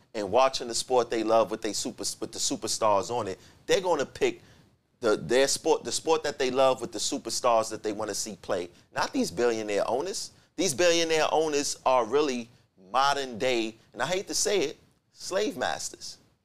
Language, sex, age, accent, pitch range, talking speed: English, male, 30-49, American, 115-145 Hz, 185 wpm